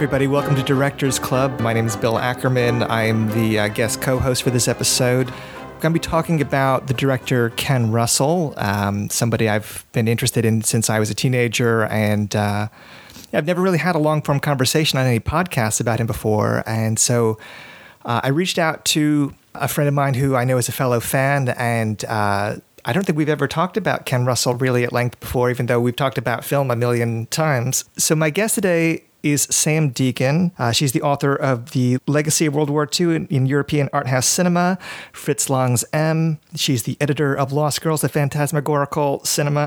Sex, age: male, 30-49